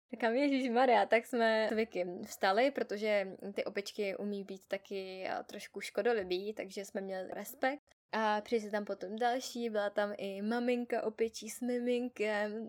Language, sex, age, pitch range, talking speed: Czech, female, 10-29, 205-235 Hz, 140 wpm